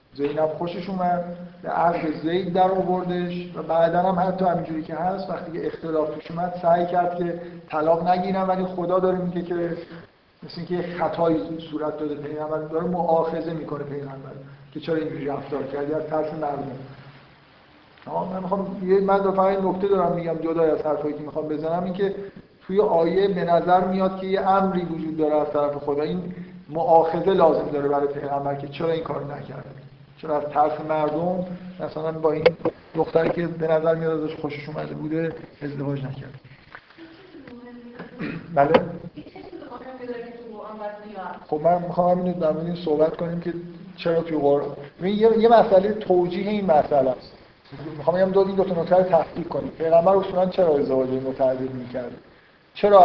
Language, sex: Persian, male